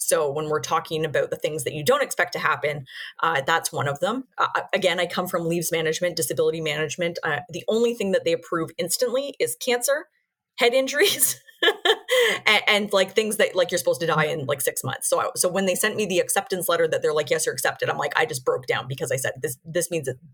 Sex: female